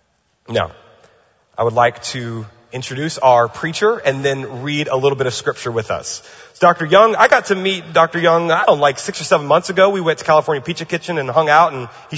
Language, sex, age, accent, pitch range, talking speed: English, male, 30-49, American, 125-155 Hz, 230 wpm